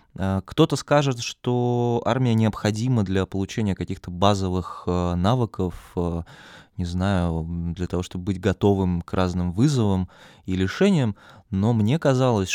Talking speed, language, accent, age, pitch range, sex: 120 wpm, Russian, native, 20-39, 90-115 Hz, male